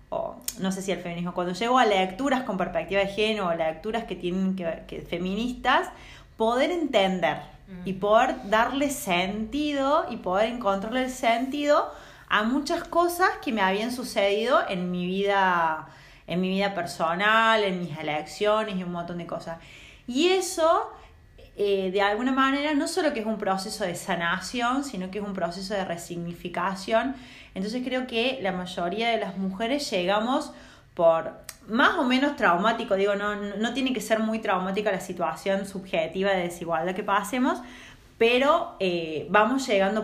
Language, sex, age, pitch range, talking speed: Spanish, female, 30-49, 185-240 Hz, 165 wpm